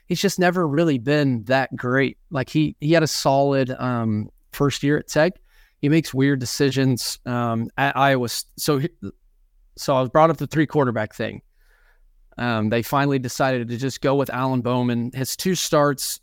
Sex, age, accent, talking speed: male, 20-39, American, 180 wpm